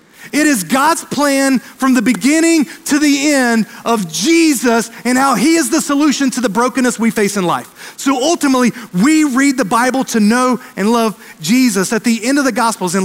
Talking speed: 200 wpm